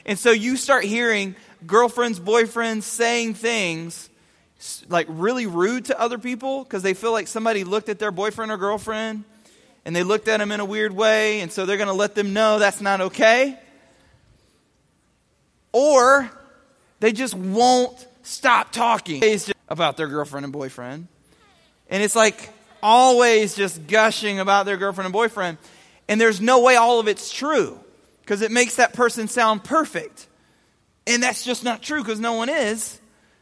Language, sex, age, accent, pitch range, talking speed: English, male, 20-39, American, 195-235 Hz, 165 wpm